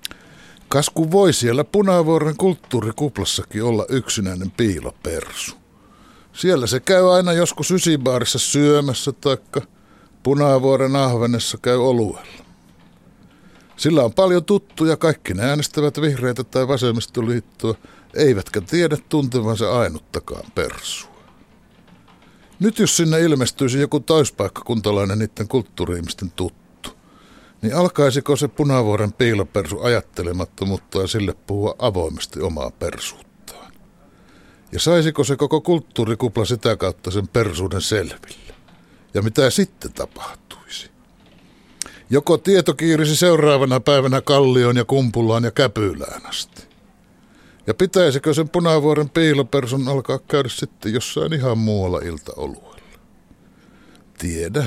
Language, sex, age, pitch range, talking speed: Finnish, male, 60-79, 110-155 Hz, 100 wpm